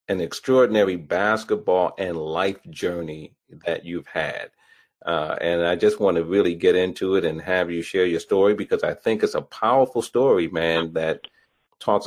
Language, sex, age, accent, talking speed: English, male, 40-59, American, 175 wpm